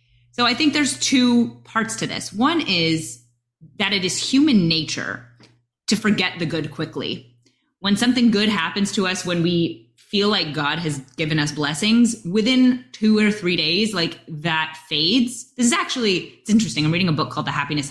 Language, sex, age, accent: English, female, 20-39, American